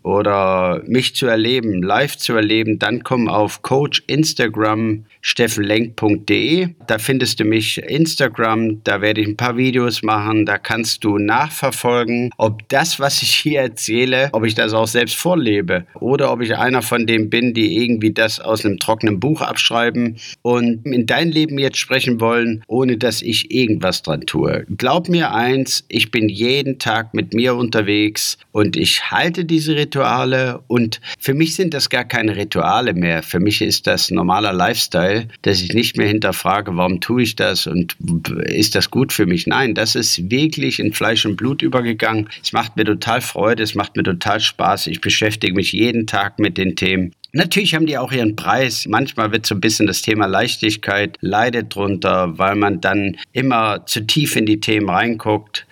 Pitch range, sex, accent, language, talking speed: 105-130 Hz, male, German, German, 180 wpm